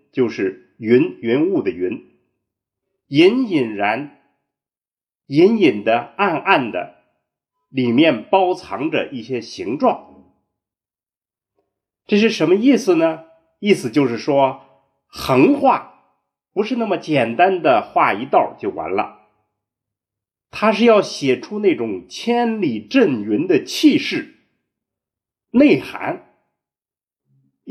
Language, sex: Chinese, male